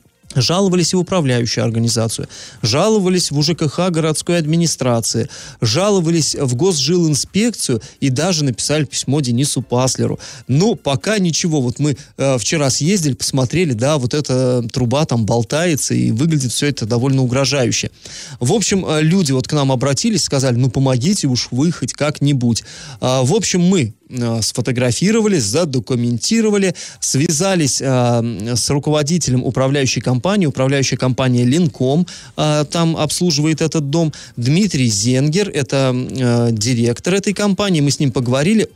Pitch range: 125-160 Hz